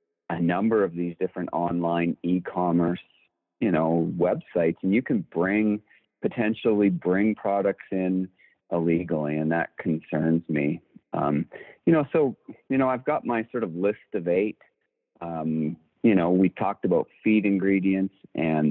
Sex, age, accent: male, 40-59, American